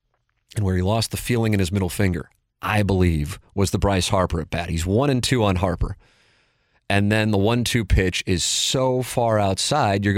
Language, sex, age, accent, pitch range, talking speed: English, male, 40-59, American, 95-125 Hz, 200 wpm